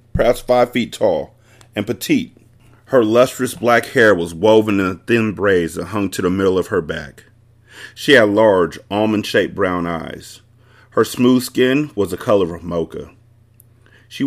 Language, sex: English, male